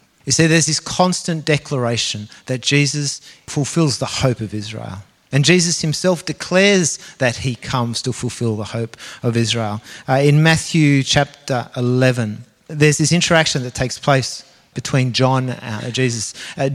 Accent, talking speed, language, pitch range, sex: Australian, 150 wpm, English, 115-155 Hz, male